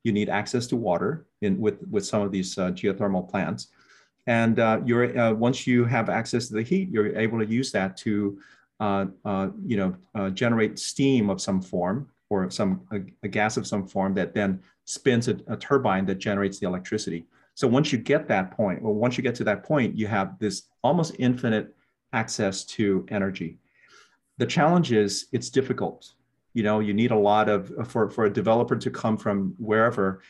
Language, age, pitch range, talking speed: English, 40-59, 100-120 Hz, 200 wpm